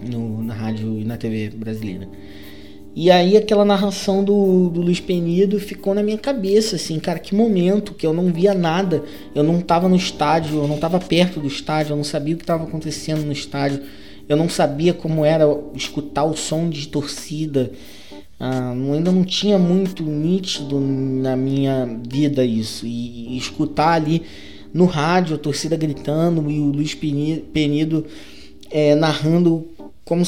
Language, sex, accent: Portuguese, male, Brazilian